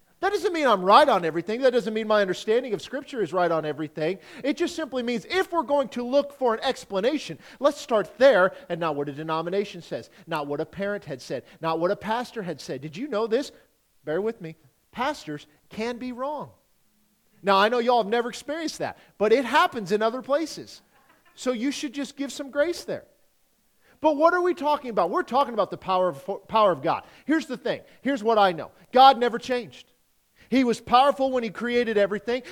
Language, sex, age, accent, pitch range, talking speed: English, male, 40-59, American, 220-280 Hz, 215 wpm